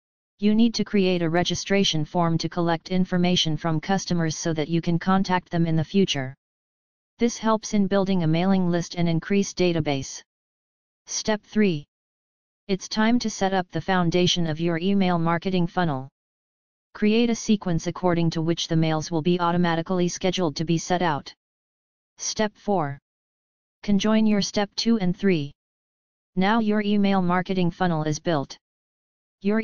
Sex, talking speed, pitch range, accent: female, 155 wpm, 165-195 Hz, American